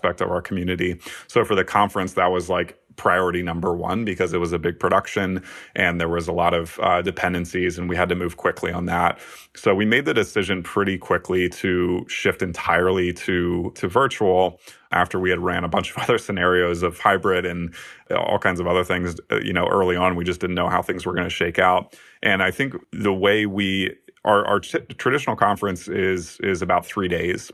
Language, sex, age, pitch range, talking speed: English, male, 30-49, 90-100 Hz, 210 wpm